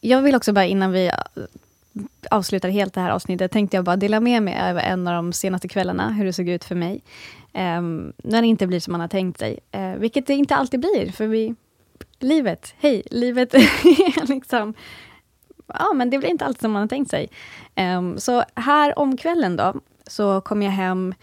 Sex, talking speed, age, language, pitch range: female, 205 wpm, 20-39, Swedish, 185-235 Hz